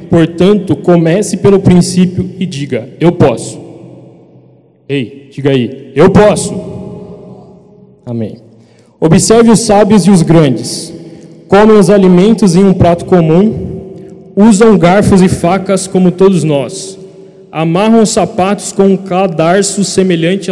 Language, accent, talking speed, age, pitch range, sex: Portuguese, Brazilian, 115 wpm, 20-39, 165-195 Hz, male